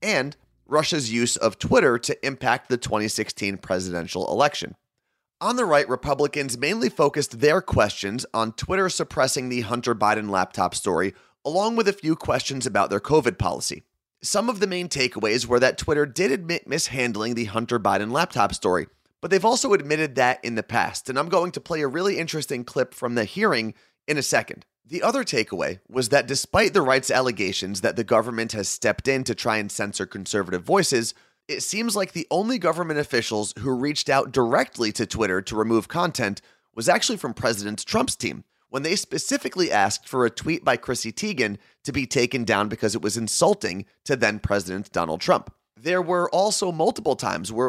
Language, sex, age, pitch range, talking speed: English, male, 30-49, 110-155 Hz, 185 wpm